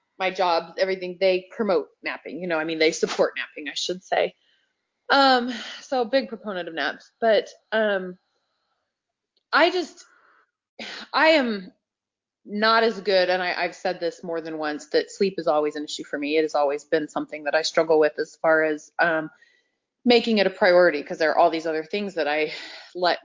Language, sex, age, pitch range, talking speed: English, female, 30-49, 160-225 Hz, 190 wpm